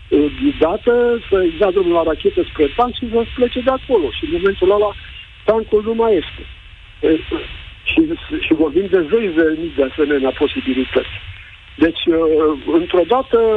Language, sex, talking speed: Romanian, male, 155 wpm